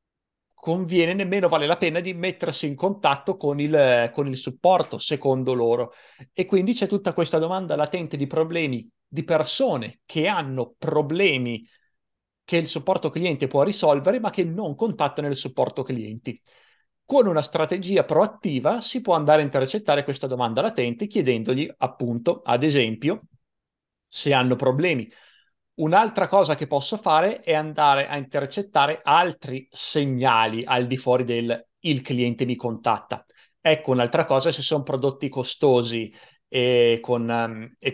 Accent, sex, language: native, male, Italian